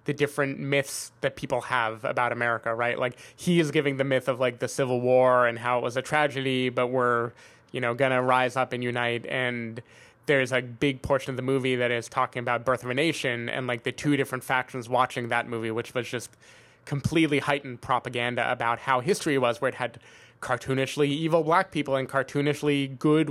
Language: English